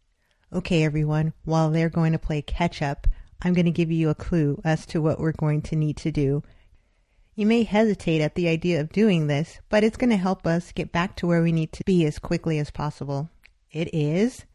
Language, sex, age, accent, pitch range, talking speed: English, female, 30-49, American, 155-200 Hz, 220 wpm